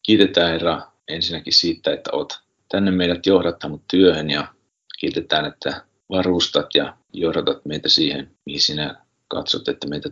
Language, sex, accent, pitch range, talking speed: Finnish, male, native, 80-95 Hz, 135 wpm